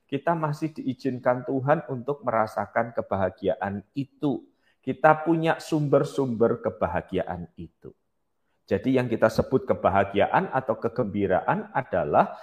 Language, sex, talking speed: Malay, male, 100 wpm